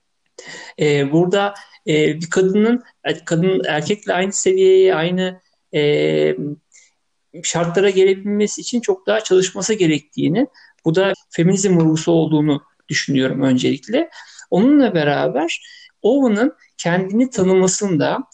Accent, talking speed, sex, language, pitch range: native, 90 wpm, male, Turkish, 165-220 Hz